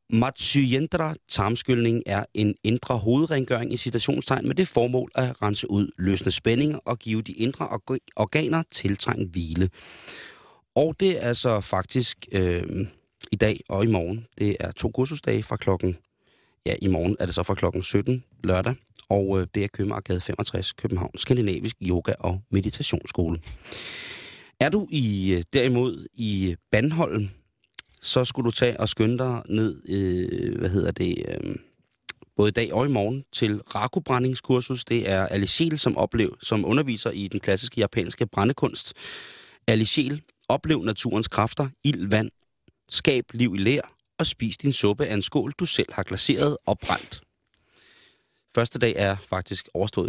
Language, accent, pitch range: Danish, native, 95-125 Hz